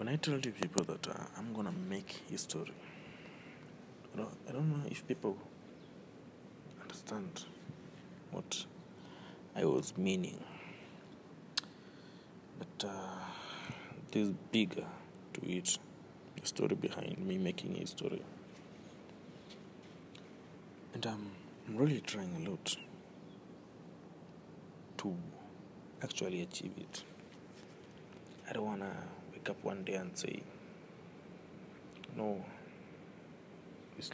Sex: male